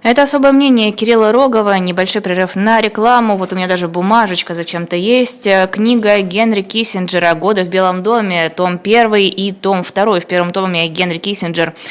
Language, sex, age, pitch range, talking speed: Russian, female, 20-39, 170-210 Hz, 165 wpm